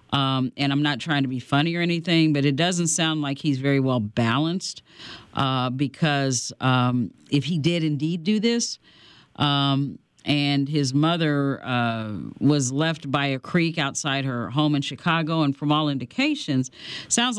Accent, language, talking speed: American, English, 165 wpm